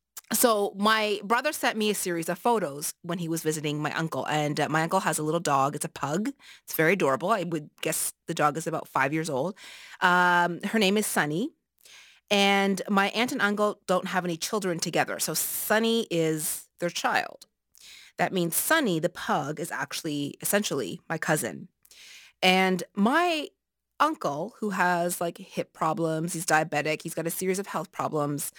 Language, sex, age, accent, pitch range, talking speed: English, female, 30-49, American, 165-225 Hz, 180 wpm